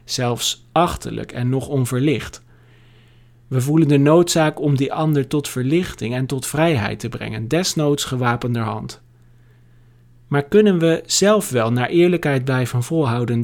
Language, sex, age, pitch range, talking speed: Dutch, male, 40-59, 120-145 Hz, 140 wpm